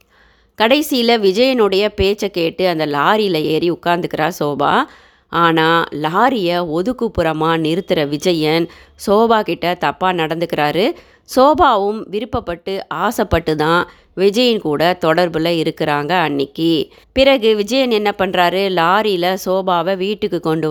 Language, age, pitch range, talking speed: Tamil, 30-49, 165-210 Hz, 100 wpm